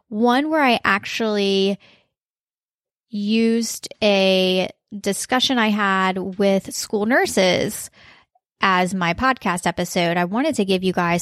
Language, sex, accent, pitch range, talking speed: English, female, American, 185-240 Hz, 120 wpm